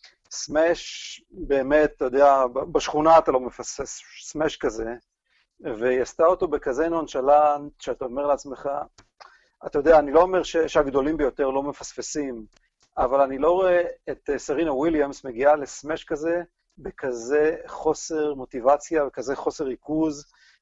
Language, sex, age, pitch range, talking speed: Hebrew, male, 40-59, 125-160 Hz, 125 wpm